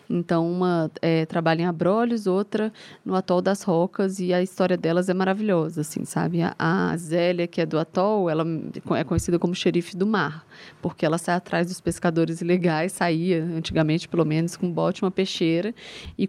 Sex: female